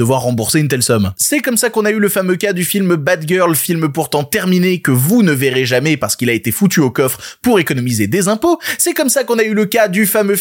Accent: French